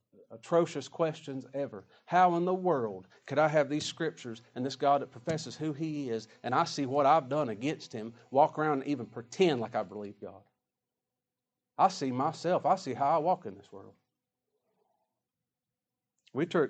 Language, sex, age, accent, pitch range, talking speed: English, male, 40-59, American, 140-205 Hz, 175 wpm